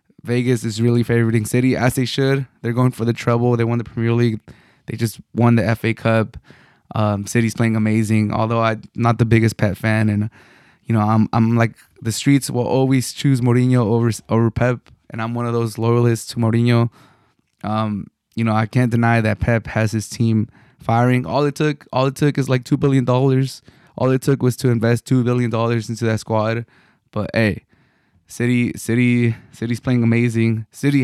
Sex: male